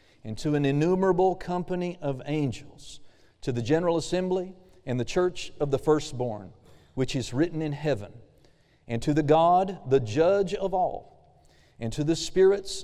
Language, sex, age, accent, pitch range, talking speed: English, male, 40-59, American, 135-175 Hz, 160 wpm